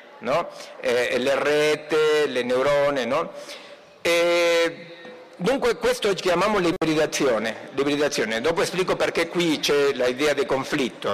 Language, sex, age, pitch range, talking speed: Italian, male, 50-69, 150-205 Hz, 115 wpm